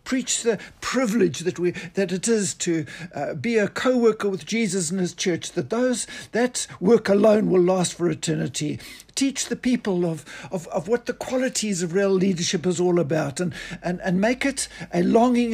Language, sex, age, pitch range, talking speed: English, male, 60-79, 165-225 Hz, 190 wpm